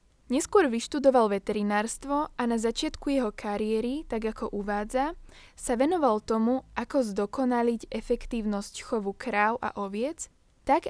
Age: 10-29